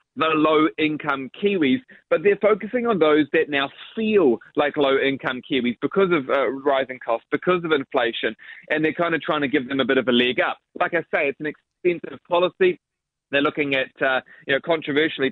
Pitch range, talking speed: 140-170 Hz, 195 wpm